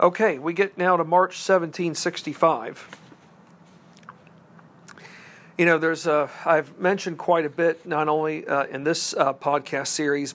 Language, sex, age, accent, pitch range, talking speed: English, male, 50-69, American, 150-180 Hz, 140 wpm